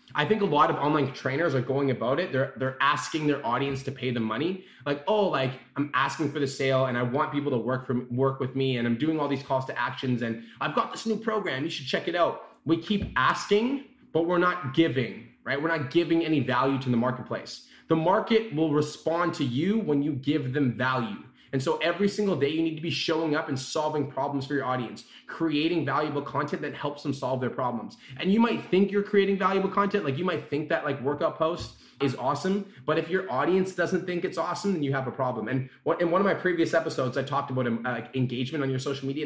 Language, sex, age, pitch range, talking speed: English, male, 20-39, 130-170 Hz, 240 wpm